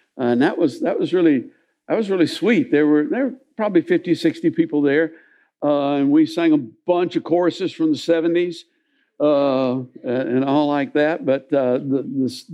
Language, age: English, 60-79